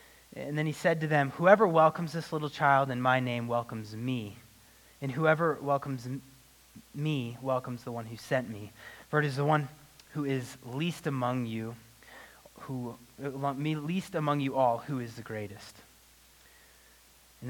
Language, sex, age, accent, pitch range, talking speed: English, male, 30-49, American, 120-150 Hz, 160 wpm